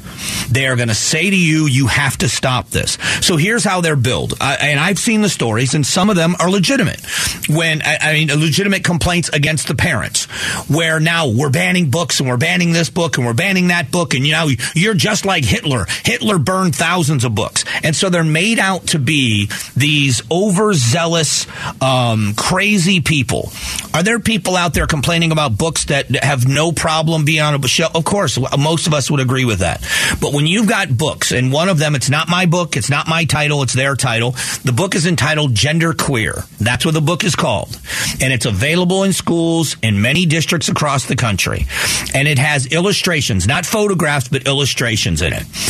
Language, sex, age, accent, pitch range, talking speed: English, male, 40-59, American, 130-170 Hz, 200 wpm